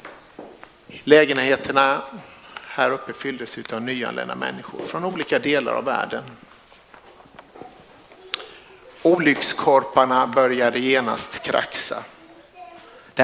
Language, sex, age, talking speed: Swedish, male, 60-79, 75 wpm